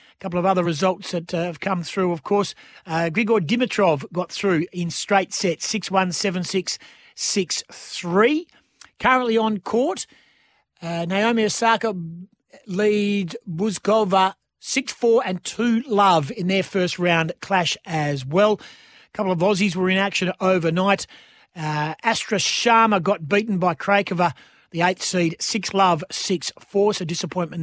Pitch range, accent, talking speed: 170-210 Hz, Australian, 135 wpm